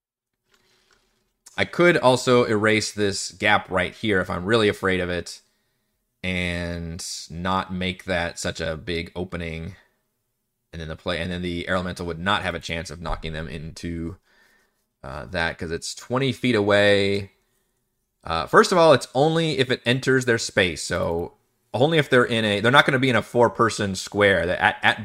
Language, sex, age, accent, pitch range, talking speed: English, male, 30-49, American, 90-115 Hz, 175 wpm